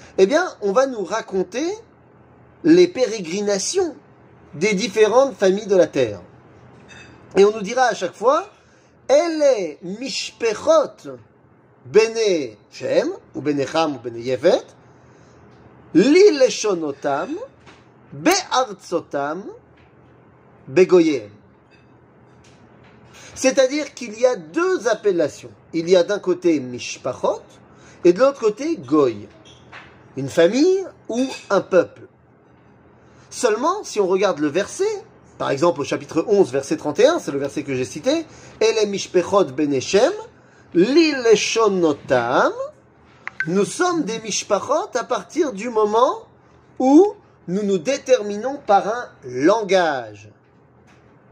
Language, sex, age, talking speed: French, male, 40-59, 105 wpm